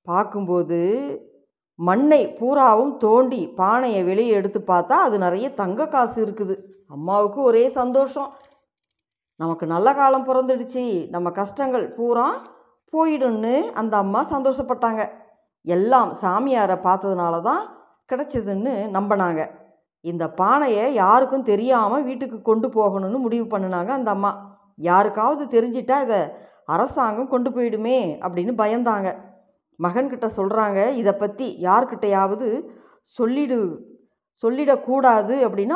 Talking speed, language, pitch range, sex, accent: 100 wpm, Tamil, 200-260 Hz, female, native